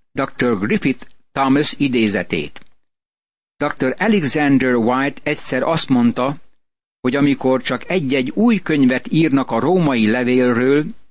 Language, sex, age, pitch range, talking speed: Hungarian, male, 60-79, 125-155 Hz, 110 wpm